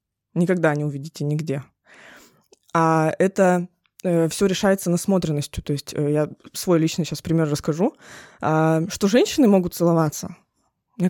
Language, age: Russian, 20-39